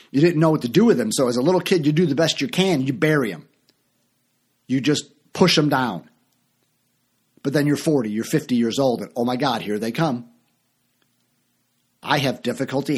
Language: English